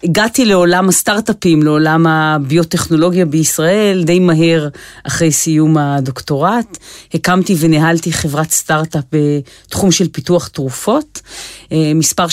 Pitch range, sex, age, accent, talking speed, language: 155-195 Hz, female, 40-59, native, 95 wpm, Hebrew